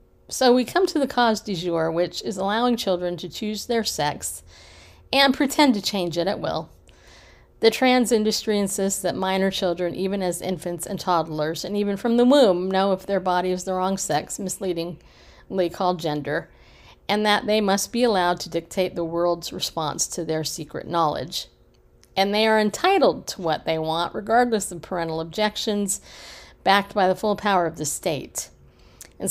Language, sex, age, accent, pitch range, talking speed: English, female, 50-69, American, 175-220 Hz, 180 wpm